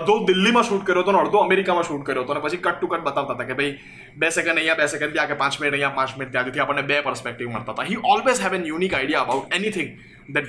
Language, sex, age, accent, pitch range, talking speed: Gujarati, male, 20-39, native, 140-185 Hz, 265 wpm